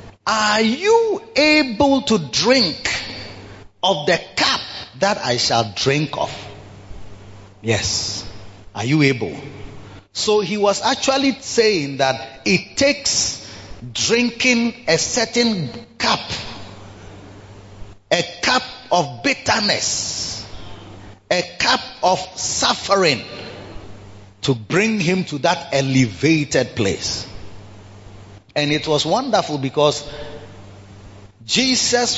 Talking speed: 95 wpm